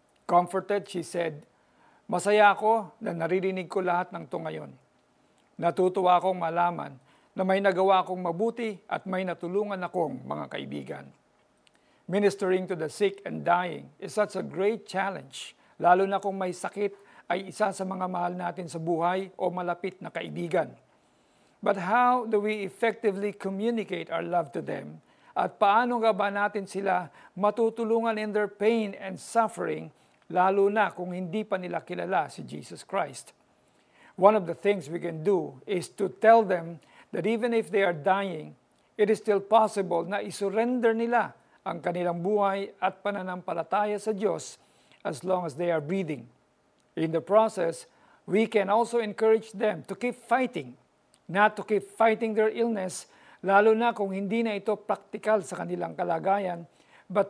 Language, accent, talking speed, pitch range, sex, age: Filipino, native, 160 wpm, 180-215 Hz, male, 50-69